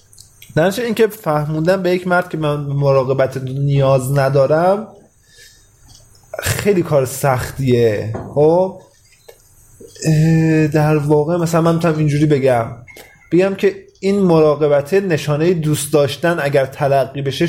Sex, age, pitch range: male, 20-39, 130-165 Hz